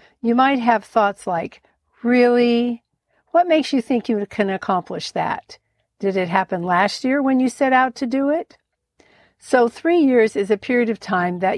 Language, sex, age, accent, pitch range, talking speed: English, female, 60-79, American, 185-235 Hz, 180 wpm